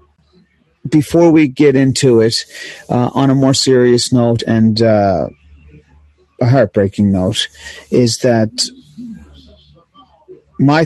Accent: American